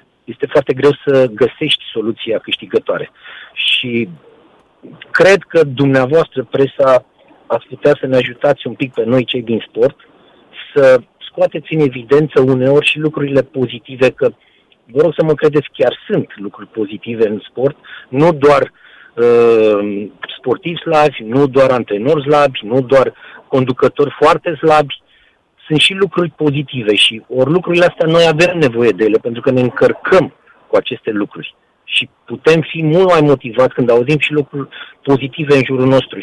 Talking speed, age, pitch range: 150 wpm, 50-69, 130-160 Hz